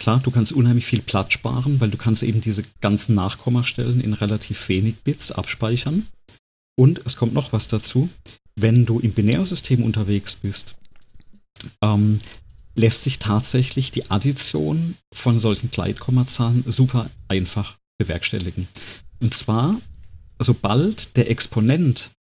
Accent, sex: German, male